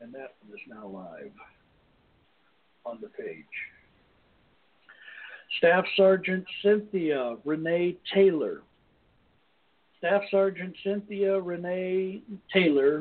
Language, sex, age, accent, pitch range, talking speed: English, male, 60-79, American, 145-190 Hz, 90 wpm